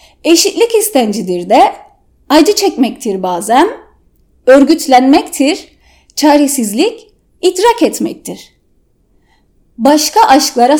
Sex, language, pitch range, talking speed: female, Turkish, 245-320 Hz, 65 wpm